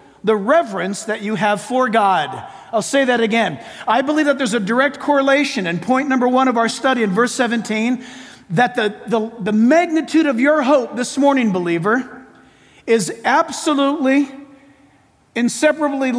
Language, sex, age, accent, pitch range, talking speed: English, male, 50-69, American, 225-285 Hz, 150 wpm